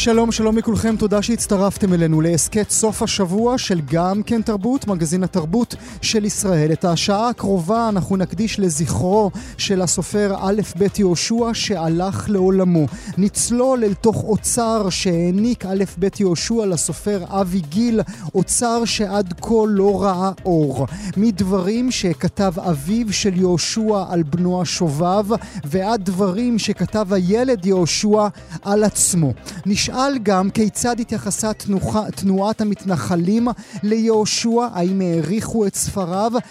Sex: male